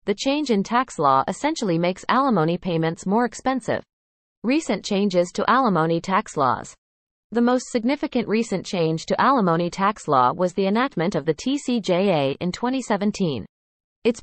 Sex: female